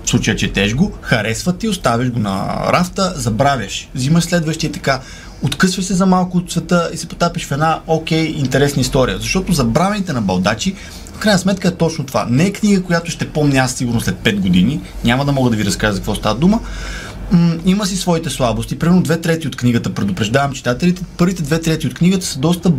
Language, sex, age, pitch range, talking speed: Bulgarian, male, 30-49, 130-175 Hz, 210 wpm